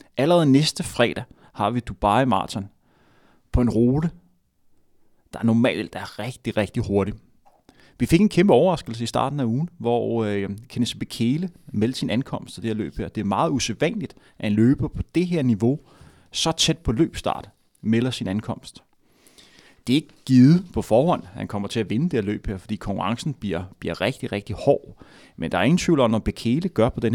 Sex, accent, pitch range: male, native, 110-140 Hz